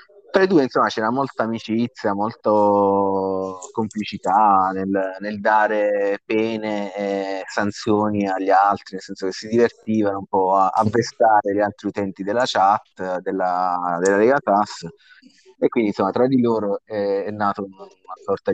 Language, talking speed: Italian, 150 wpm